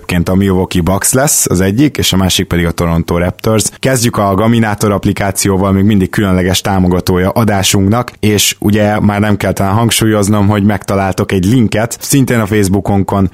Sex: male